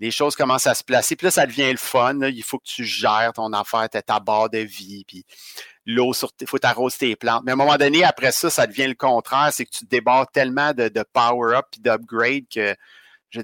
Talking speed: 250 wpm